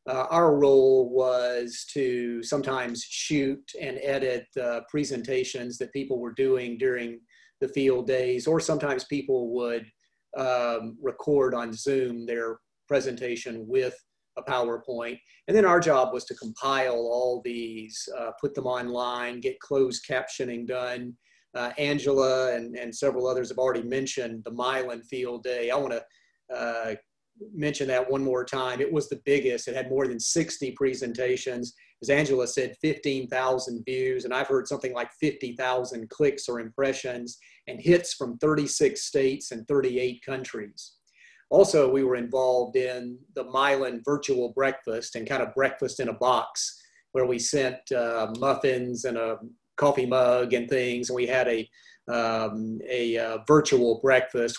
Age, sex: 40-59, male